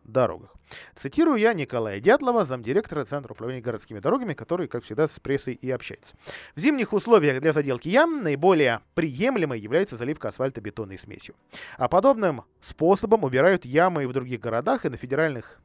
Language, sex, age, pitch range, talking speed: Russian, male, 20-39, 125-185 Hz, 155 wpm